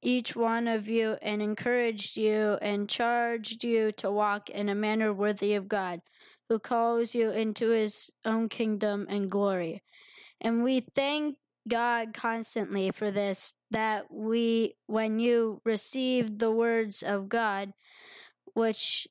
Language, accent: English, American